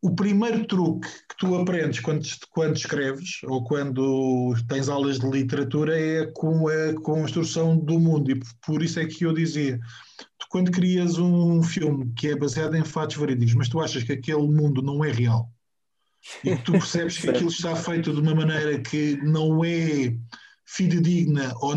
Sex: male